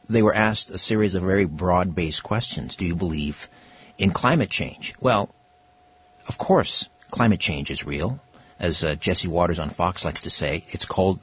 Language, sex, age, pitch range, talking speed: English, male, 60-79, 90-115 Hz, 175 wpm